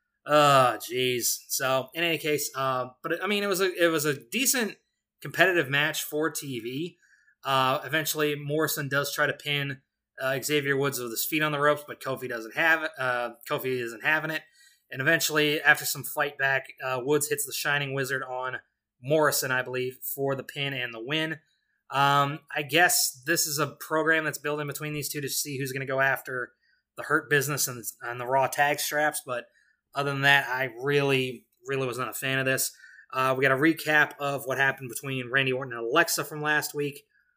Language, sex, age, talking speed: English, male, 20-39, 205 wpm